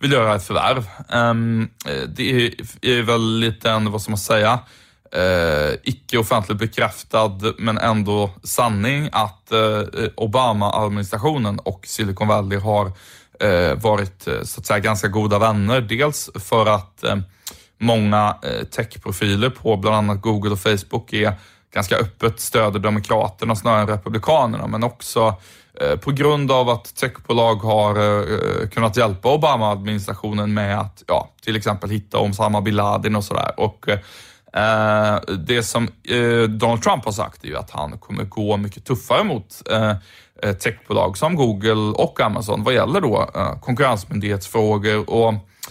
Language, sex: Swedish, male